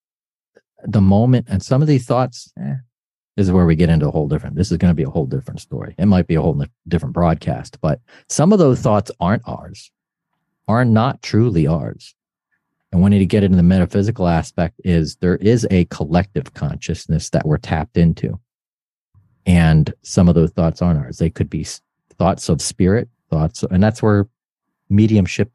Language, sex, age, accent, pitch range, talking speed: English, male, 40-59, American, 85-110 Hz, 190 wpm